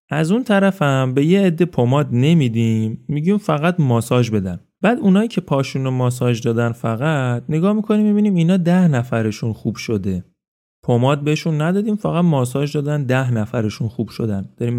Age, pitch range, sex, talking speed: 30-49, 115-170 Hz, male, 160 wpm